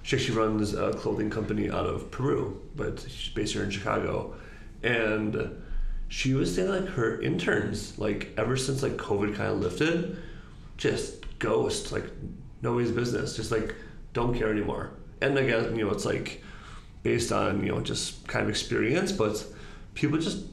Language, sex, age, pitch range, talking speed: English, male, 30-49, 105-140 Hz, 165 wpm